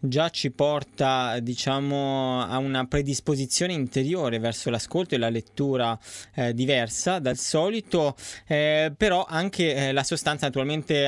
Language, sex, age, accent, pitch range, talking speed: Italian, male, 20-39, native, 120-155 Hz, 130 wpm